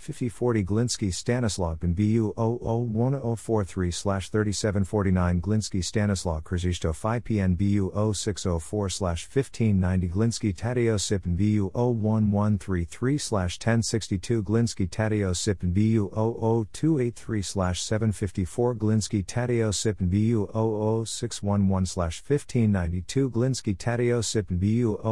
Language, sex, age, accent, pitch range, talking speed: English, male, 50-69, American, 95-115 Hz, 140 wpm